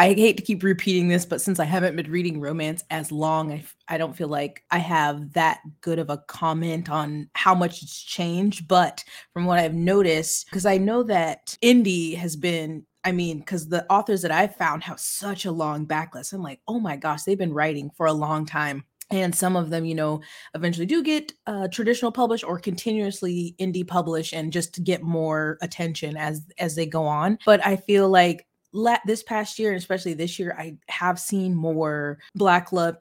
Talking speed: 205 wpm